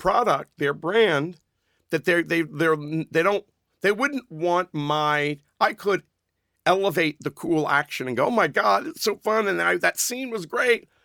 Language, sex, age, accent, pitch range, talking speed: English, male, 50-69, American, 140-190 Hz, 180 wpm